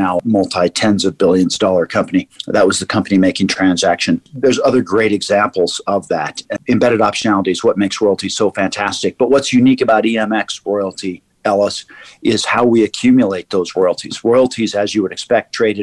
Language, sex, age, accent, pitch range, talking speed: English, male, 50-69, American, 95-110 Hz, 170 wpm